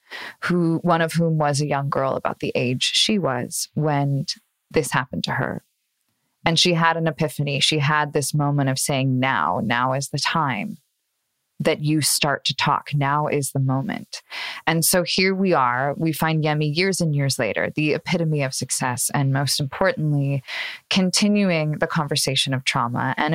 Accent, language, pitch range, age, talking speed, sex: American, English, 140-170 Hz, 20-39, 175 wpm, female